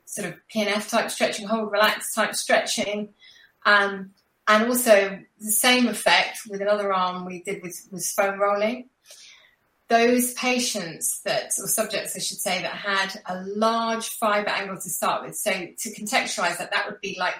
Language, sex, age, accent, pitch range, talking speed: English, female, 30-49, British, 190-225 Hz, 160 wpm